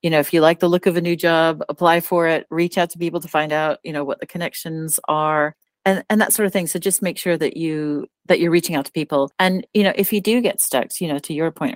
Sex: female